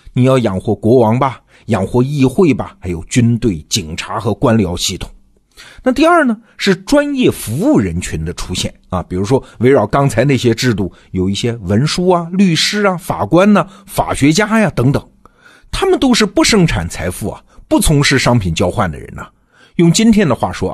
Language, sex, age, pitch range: Chinese, male, 50-69, 100-160 Hz